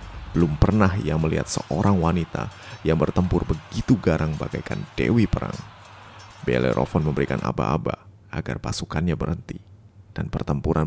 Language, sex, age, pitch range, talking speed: Indonesian, male, 30-49, 85-105 Hz, 115 wpm